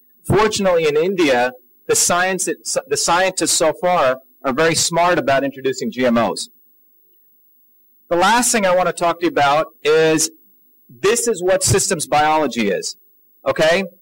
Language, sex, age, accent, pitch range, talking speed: English, male, 40-59, American, 140-180 Hz, 140 wpm